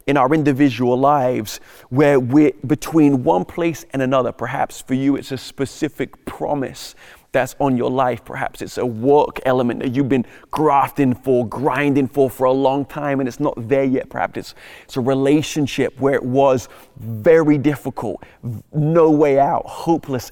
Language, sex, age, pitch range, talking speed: English, male, 30-49, 125-150 Hz, 170 wpm